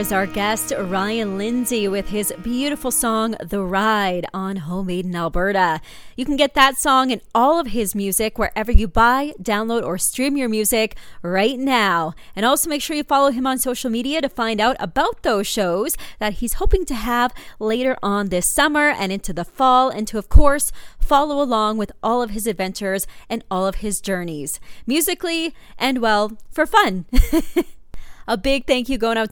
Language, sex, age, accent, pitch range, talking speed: English, female, 30-49, American, 200-260 Hz, 185 wpm